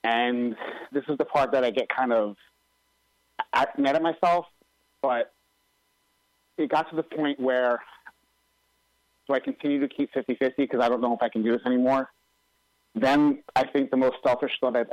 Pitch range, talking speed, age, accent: 120-145 Hz, 175 wpm, 30-49, American